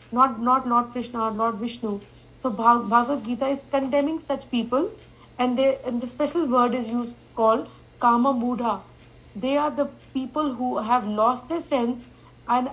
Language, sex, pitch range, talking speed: English, female, 225-270 Hz, 165 wpm